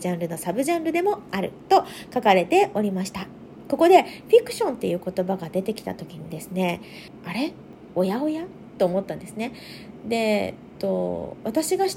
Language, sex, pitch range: Japanese, female, 195-290 Hz